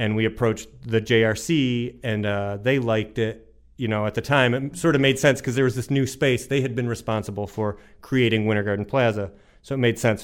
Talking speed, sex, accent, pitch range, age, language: 230 wpm, male, American, 110-130 Hz, 30-49, English